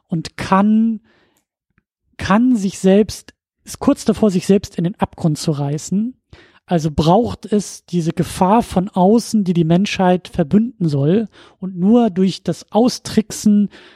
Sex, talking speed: male, 140 wpm